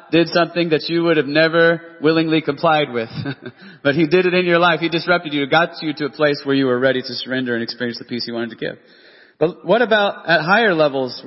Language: English